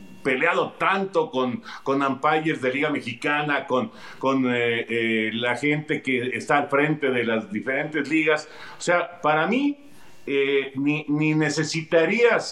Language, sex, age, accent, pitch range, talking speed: Spanish, male, 50-69, Mexican, 145-210 Hz, 140 wpm